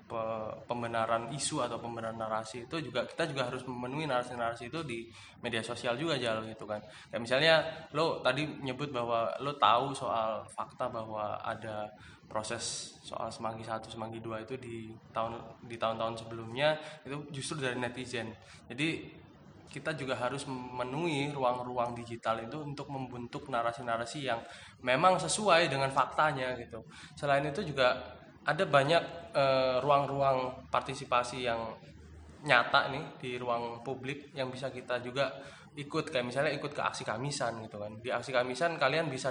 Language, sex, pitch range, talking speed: Indonesian, male, 115-140 Hz, 150 wpm